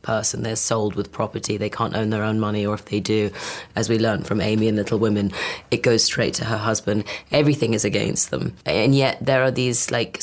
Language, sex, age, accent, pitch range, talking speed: English, female, 30-49, British, 110-125 Hz, 240 wpm